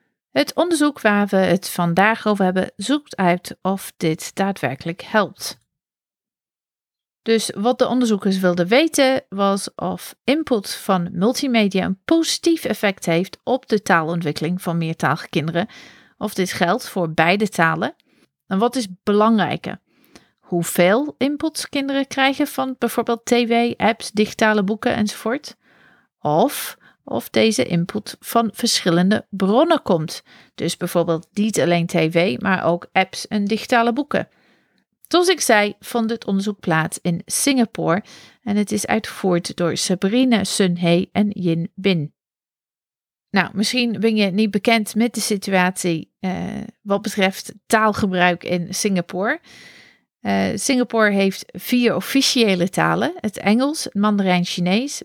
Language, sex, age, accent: Dutch, female, 40-59, Dutch